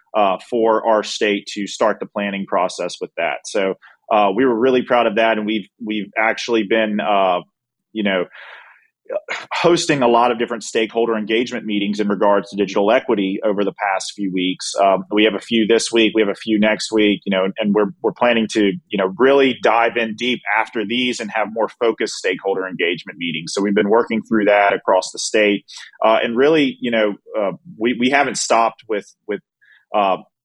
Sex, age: male, 30-49